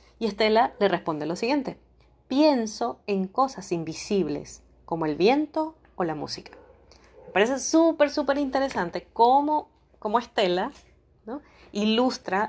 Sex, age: female, 30-49